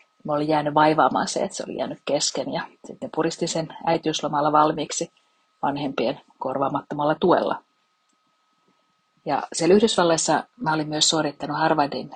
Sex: female